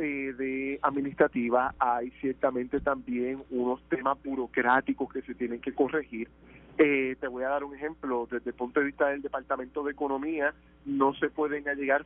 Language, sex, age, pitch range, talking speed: Spanish, male, 40-59, 130-160 Hz, 165 wpm